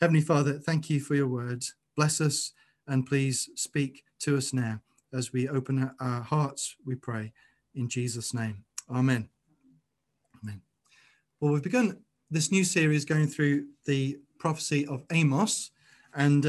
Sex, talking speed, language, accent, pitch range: male, 145 wpm, English, British, 130-150 Hz